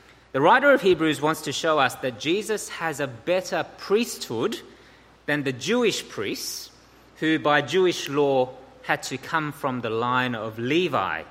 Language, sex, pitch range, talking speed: English, male, 130-170 Hz, 160 wpm